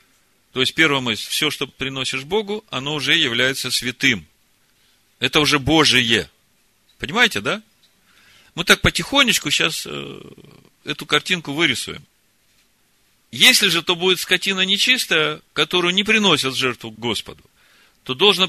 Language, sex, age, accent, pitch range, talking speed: Russian, male, 40-59, native, 130-185 Hz, 125 wpm